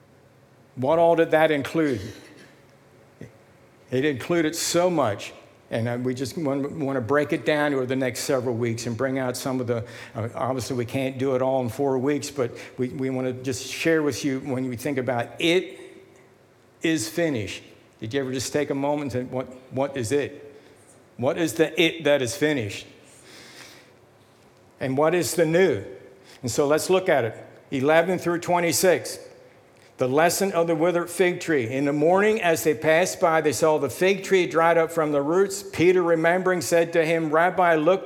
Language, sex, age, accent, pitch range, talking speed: English, male, 60-79, American, 135-170 Hz, 185 wpm